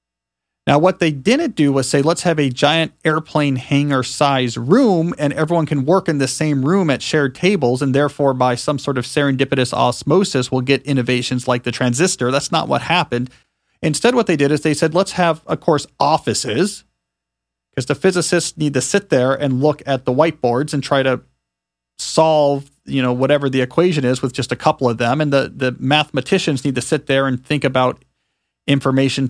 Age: 40-59